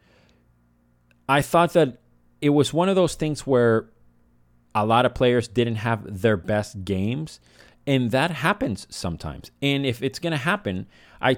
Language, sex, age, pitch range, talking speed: English, male, 30-49, 95-130 Hz, 160 wpm